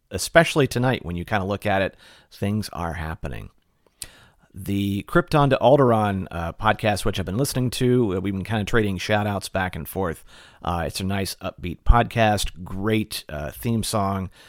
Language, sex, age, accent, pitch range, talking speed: English, male, 40-59, American, 95-115 Hz, 180 wpm